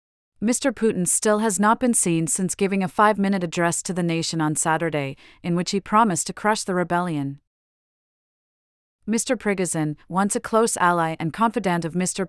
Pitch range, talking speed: 165-200 Hz, 170 wpm